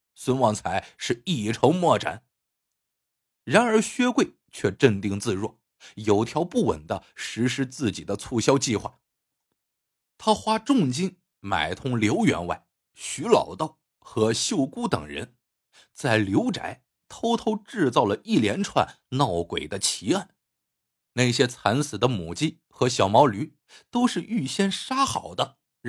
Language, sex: Chinese, male